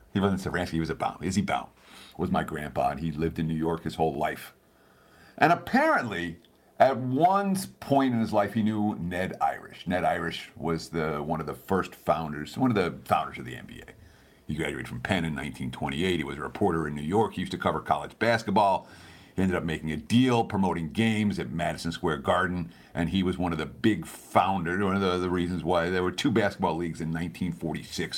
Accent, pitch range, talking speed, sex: American, 80-120 Hz, 215 wpm, male